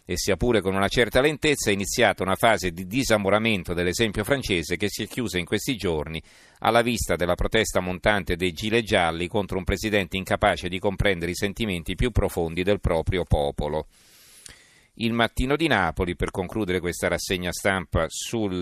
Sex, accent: male, native